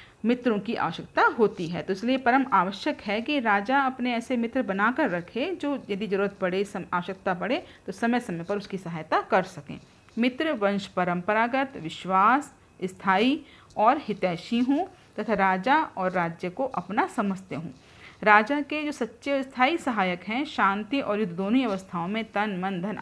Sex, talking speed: female, 165 wpm